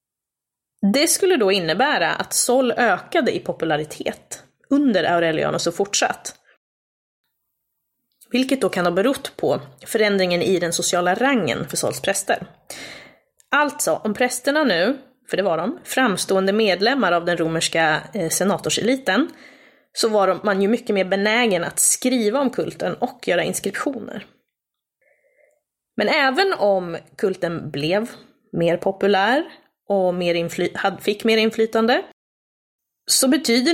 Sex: female